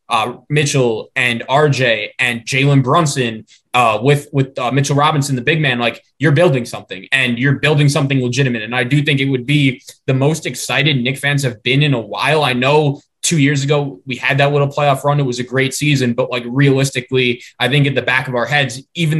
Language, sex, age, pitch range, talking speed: English, male, 20-39, 125-150 Hz, 220 wpm